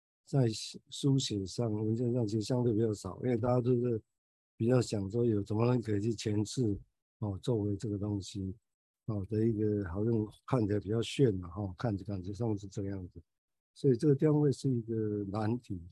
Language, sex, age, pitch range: Chinese, male, 50-69, 105-130 Hz